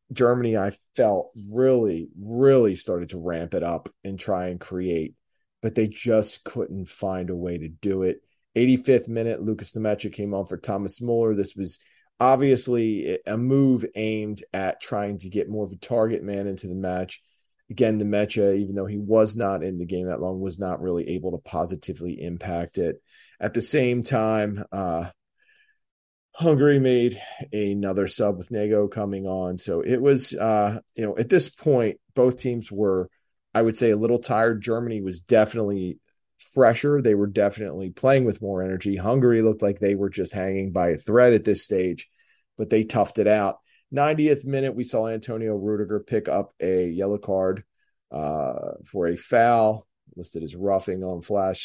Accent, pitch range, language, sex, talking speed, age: American, 95-115 Hz, English, male, 175 wpm, 30-49